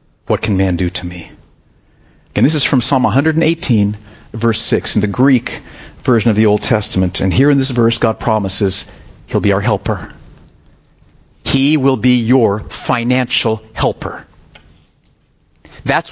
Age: 40-59